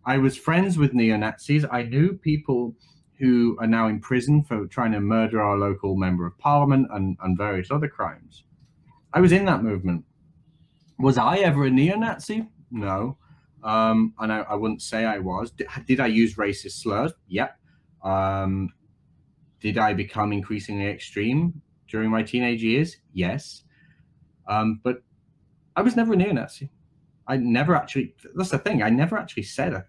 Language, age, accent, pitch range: English, 30-49, British, 110-150 Hz